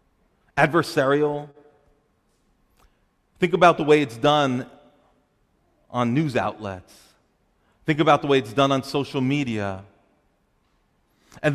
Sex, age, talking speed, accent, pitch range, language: male, 40-59, 105 wpm, American, 125-160 Hz, English